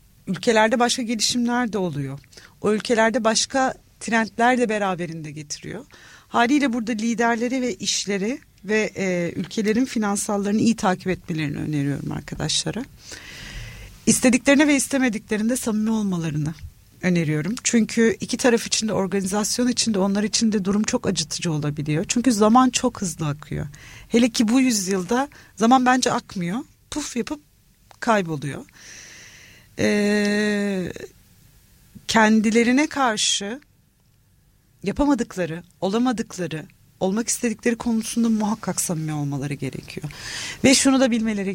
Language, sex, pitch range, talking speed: Turkish, female, 175-235 Hz, 115 wpm